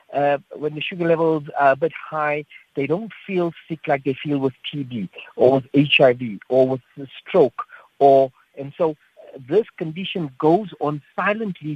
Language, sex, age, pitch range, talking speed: English, male, 50-69, 135-170 Hz, 170 wpm